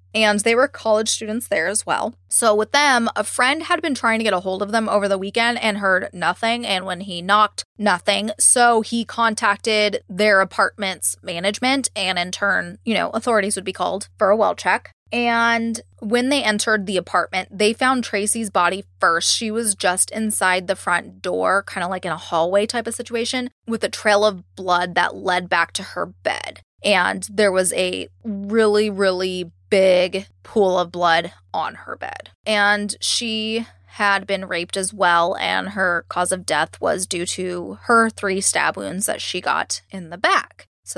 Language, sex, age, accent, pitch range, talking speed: English, female, 20-39, American, 185-225 Hz, 190 wpm